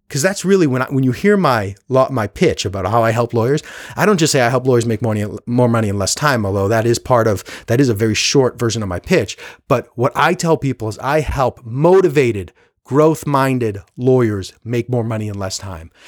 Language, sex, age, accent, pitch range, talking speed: English, male, 30-49, American, 130-175 Hz, 235 wpm